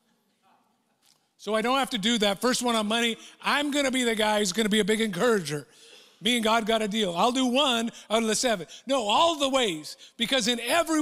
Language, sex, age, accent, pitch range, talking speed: English, male, 50-69, American, 200-260 Hz, 240 wpm